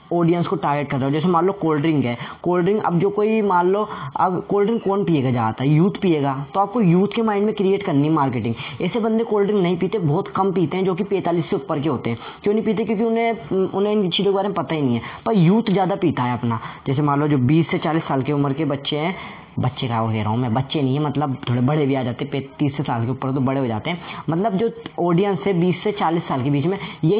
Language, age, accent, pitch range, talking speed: Hindi, 20-39, native, 145-195 Hz, 270 wpm